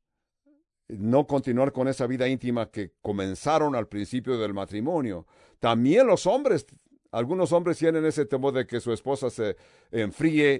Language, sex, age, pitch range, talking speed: English, male, 60-79, 110-150 Hz, 145 wpm